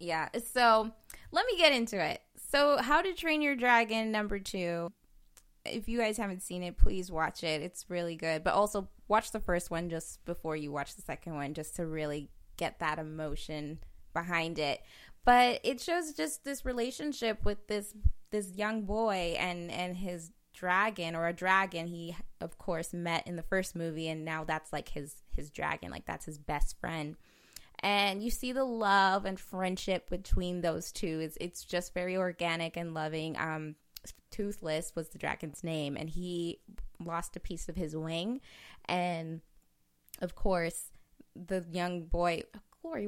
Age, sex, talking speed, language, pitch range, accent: 20-39, female, 175 wpm, English, 165-225 Hz, American